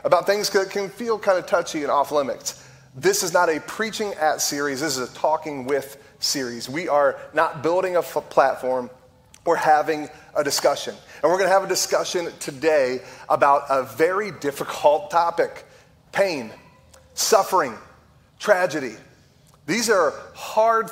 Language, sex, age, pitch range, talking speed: English, male, 30-49, 135-170 Hz, 150 wpm